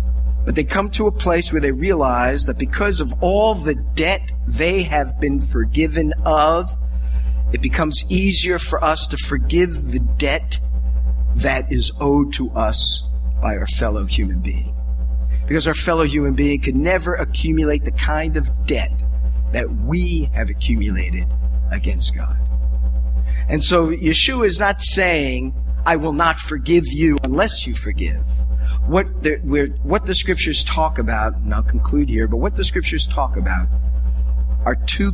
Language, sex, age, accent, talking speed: English, male, 50-69, American, 155 wpm